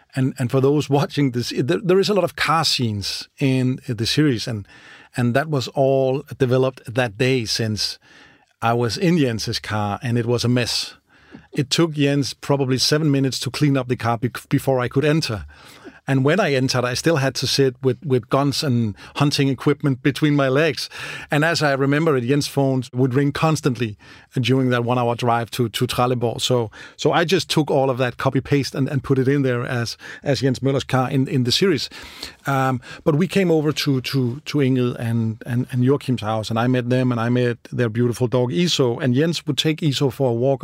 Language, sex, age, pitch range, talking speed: English, male, 40-59, 120-140 Hz, 215 wpm